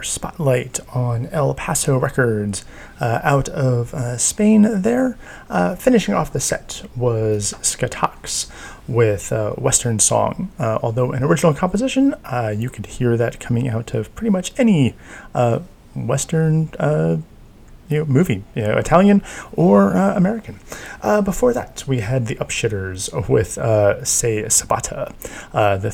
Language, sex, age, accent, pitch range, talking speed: English, male, 30-49, American, 110-155 Hz, 145 wpm